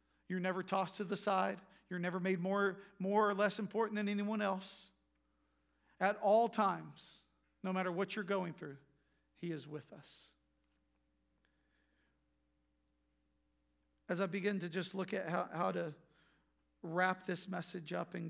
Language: English